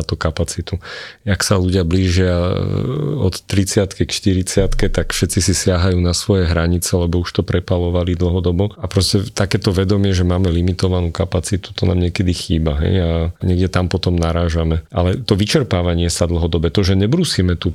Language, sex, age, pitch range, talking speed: Slovak, male, 40-59, 90-100 Hz, 165 wpm